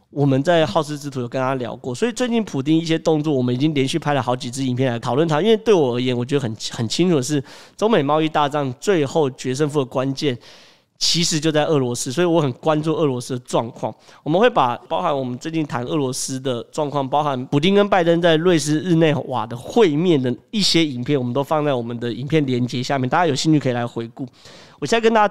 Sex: male